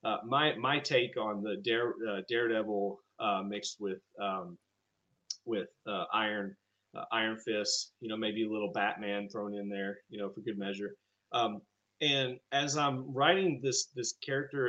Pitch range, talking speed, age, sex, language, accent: 100-135 Hz, 170 wpm, 30-49, male, English, American